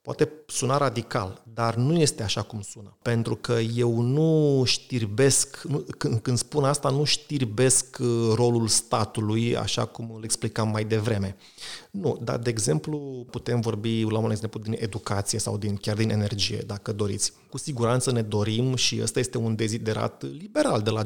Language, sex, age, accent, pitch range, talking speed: Romanian, male, 30-49, native, 110-135 Hz, 165 wpm